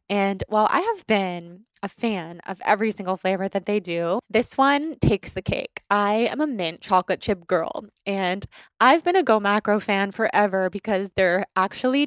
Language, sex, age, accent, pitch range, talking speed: English, female, 20-39, American, 190-240 Hz, 185 wpm